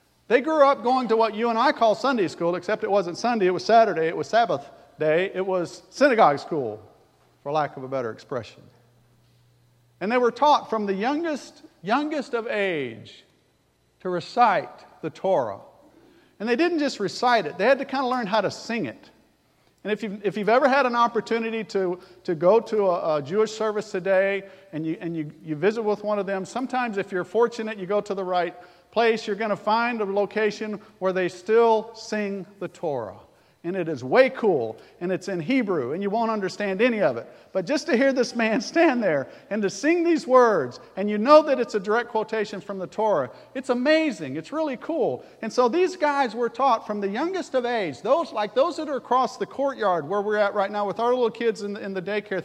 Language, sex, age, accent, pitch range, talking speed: English, male, 50-69, American, 190-255 Hz, 215 wpm